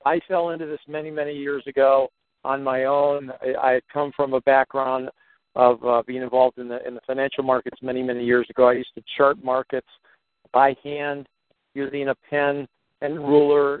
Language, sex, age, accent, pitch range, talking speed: English, male, 50-69, American, 130-150 Hz, 185 wpm